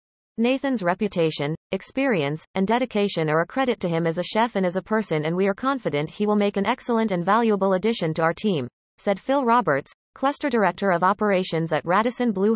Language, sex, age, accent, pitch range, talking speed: English, female, 30-49, American, 170-225 Hz, 200 wpm